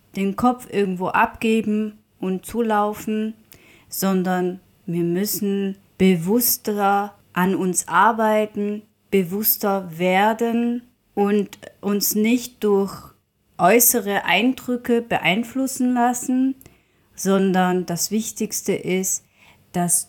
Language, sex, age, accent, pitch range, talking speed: German, female, 30-49, German, 180-220 Hz, 85 wpm